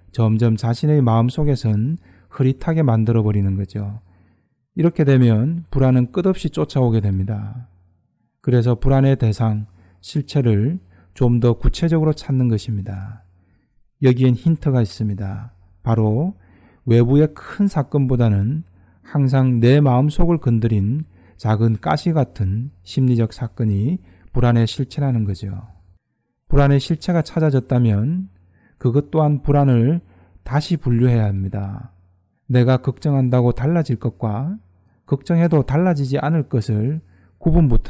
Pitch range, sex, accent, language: 110-145 Hz, male, native, Korean